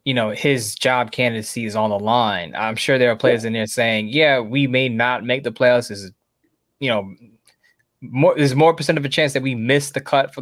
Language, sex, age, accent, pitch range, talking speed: English, male, 20-39, American, 120-150 Hz, 235 wpm